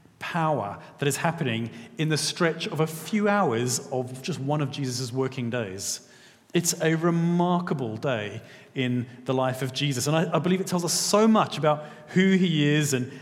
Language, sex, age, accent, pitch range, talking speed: English, male, 30-49, British, 135-185 Hz, 185 wpm